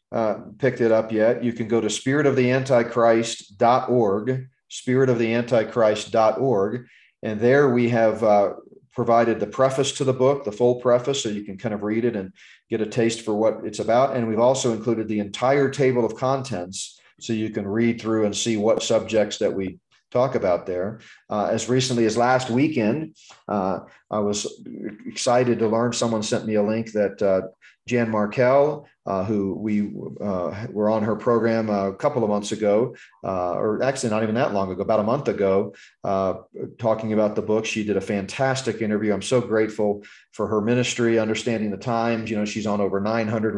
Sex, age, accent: male, 40-59, American